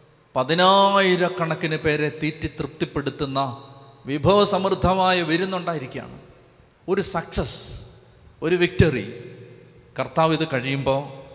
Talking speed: 65 wpm